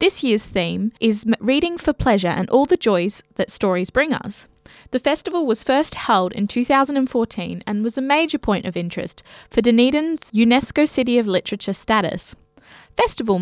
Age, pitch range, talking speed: 20-39, 195-270 Hz, 165 wpm